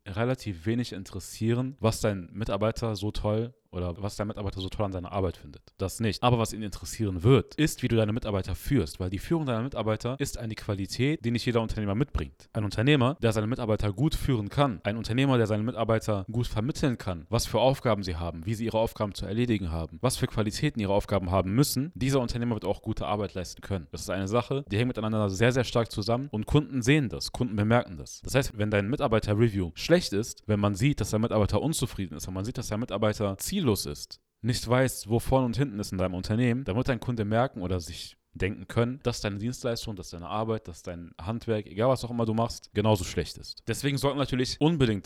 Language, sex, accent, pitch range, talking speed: German, male, German, 100-120 Hz, 225 wpm